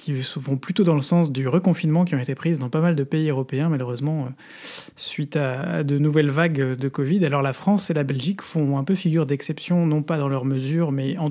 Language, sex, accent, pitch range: French, male, French, 140-165 Hz